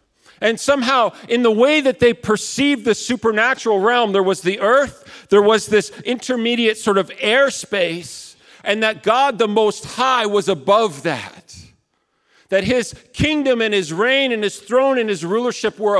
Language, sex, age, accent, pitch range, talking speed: English, male, 50-69, American, 160-230 Hz, 165 wpm